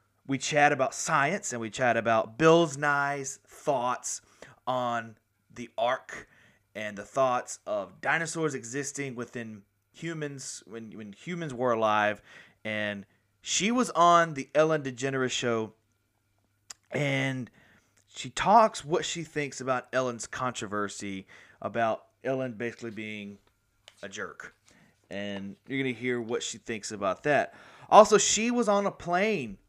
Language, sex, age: English, male, 30-49